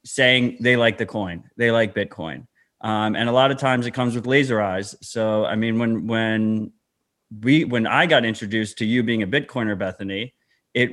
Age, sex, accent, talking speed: 30-49, male, American, 200 wpm